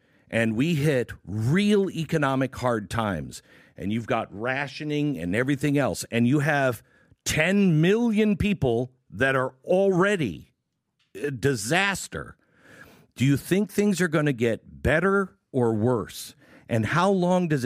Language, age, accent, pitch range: English, 50-69, American, 120-180 Hz